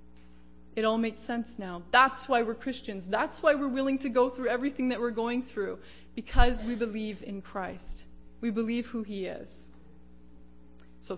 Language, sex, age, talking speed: English, female, 20-39, 170 wpm